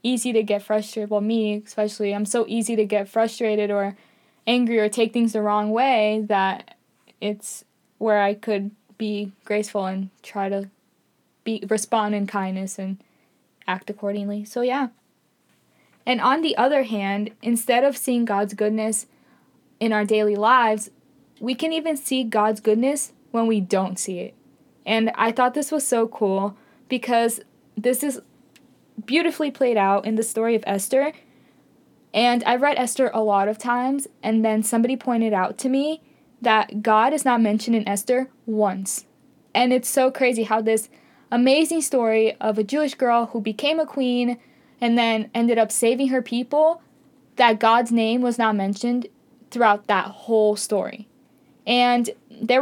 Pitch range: 210-255 Hz